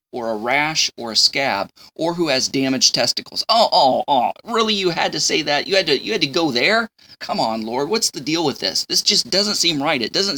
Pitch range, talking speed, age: 125-180 Hz, 250 wpm, 20-39